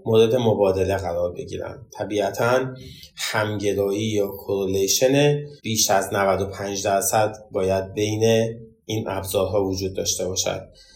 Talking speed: 100 wpm